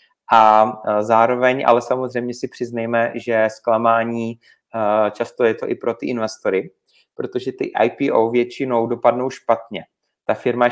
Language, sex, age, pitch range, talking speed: Czech, male, 30-49, 115-125 Hz, 135 wpm